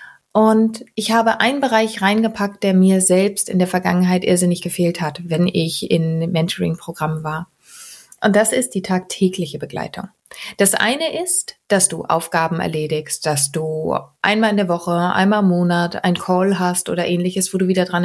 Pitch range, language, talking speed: 175-215 Hz, German, 170 wpm